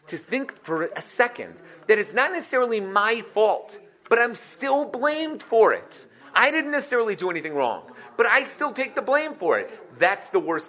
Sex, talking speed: male, 190 wpm